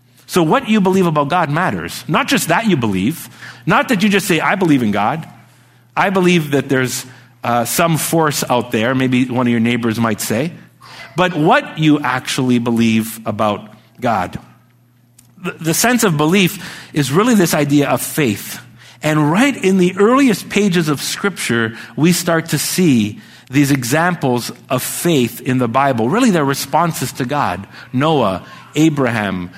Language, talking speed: English, 165 wpm